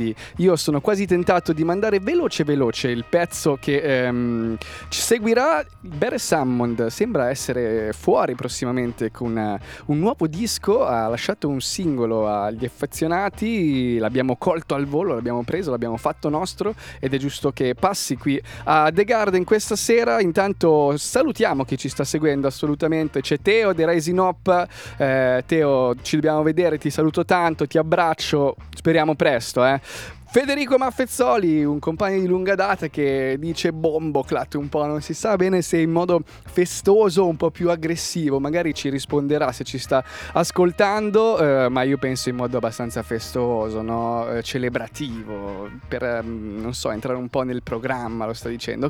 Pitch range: 125-185 Hz